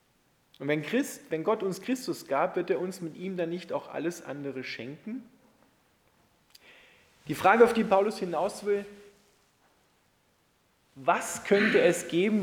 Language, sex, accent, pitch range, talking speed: German, male, German, 160-205 Hz, 140 wpm